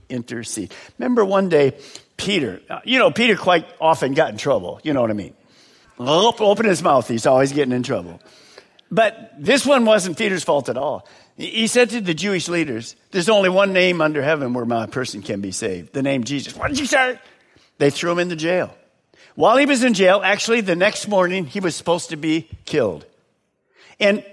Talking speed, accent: 200 wpm, American